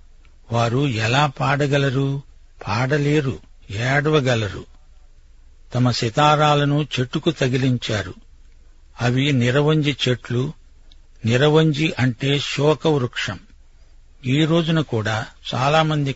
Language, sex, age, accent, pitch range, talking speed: Telugu, male, 60-79, native, 110-140 Hz, 75 wpm